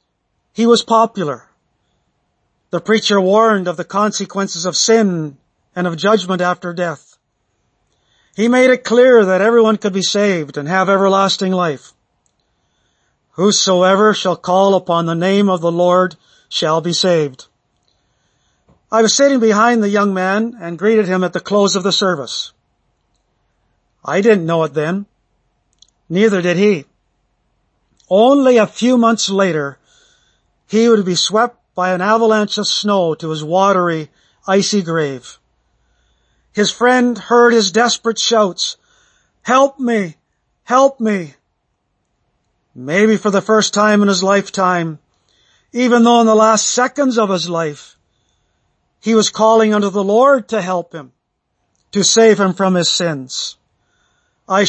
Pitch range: 175-220 Hz